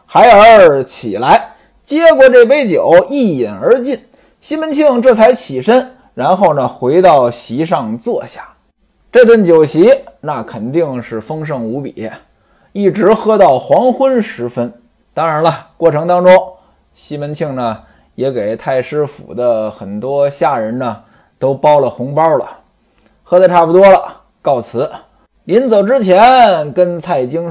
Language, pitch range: Chinese, 150-255 Hz